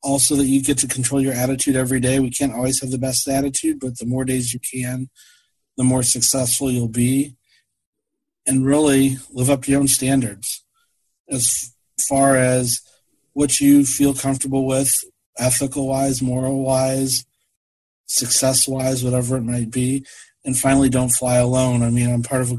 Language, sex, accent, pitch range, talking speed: English, male, American, 125-140 Hz, 165 wpm